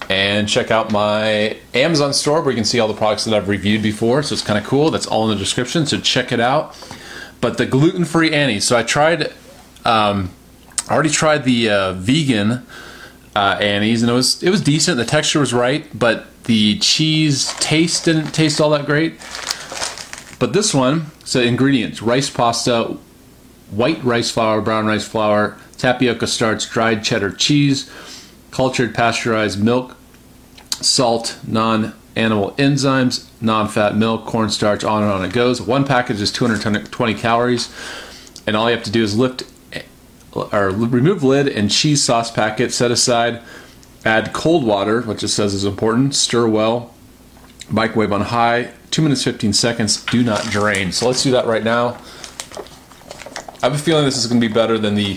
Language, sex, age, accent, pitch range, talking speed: English, male, 30-49, American, 110-130 Hz, 170 wpm